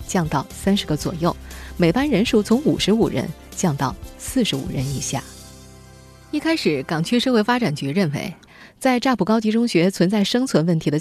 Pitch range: 155-230 Hz